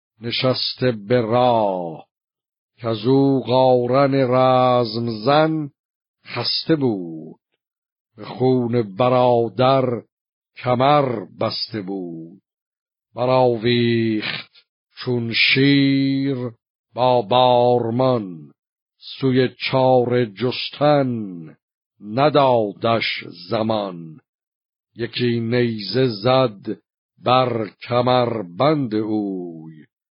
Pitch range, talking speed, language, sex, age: 110-130 Hz, 60 wpm, Persian, male, 60-79